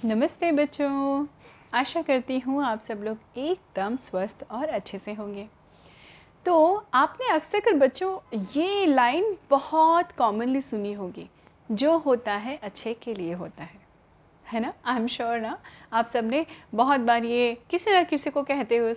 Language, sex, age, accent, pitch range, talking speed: Hindi, female, 30-49, native, 220-310 Hz, 160 wpm